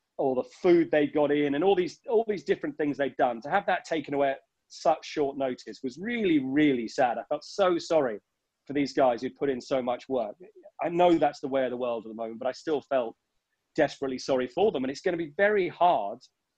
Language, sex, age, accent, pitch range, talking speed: English, male, 30-49, British, 130-165 Hz, 245 wpm